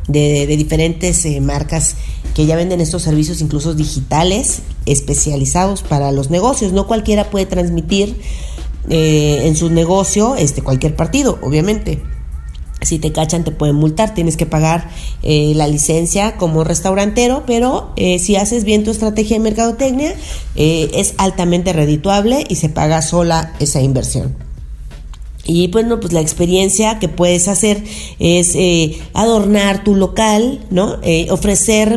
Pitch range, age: 155-205 Hz, 40-59